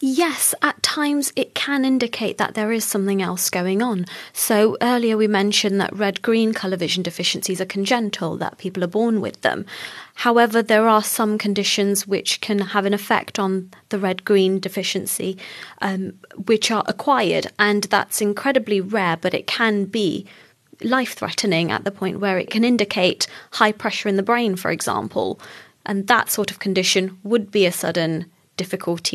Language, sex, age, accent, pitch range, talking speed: English, female, 20-39, British, 185-220 Hz, 165 wpm